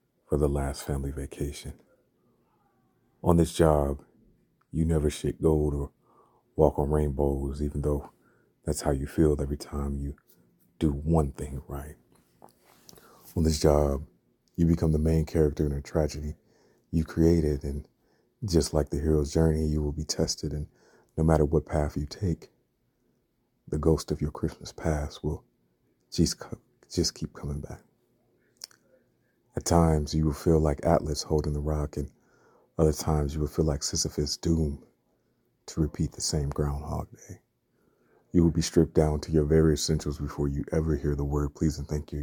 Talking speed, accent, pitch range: 165 wpm, American, 75-80 Hz